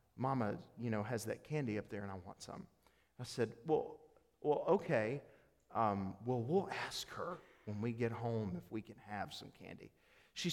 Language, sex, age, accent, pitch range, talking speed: English, male, 40-59, American, 110-165 Hz, 180 wpm